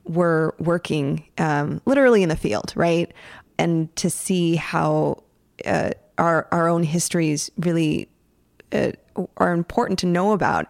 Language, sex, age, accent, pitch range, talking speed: English, female, 20-39, American, 160-195 Hz, 135 wpm